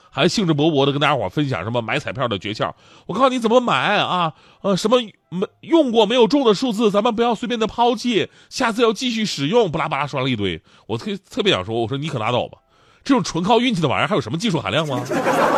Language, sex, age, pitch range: Chinese, male, 30-49, 125-205 Hz